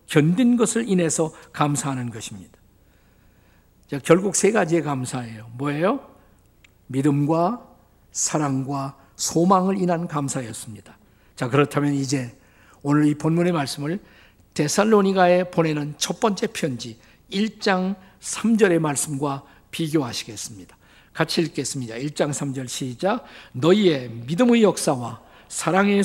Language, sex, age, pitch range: Korean, male, 50-69, 130-185 Hz